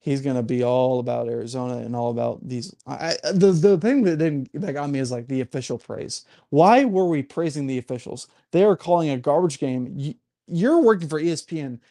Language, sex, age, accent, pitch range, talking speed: English, male, 30-49, American, 140-195 Hz, 205 wpm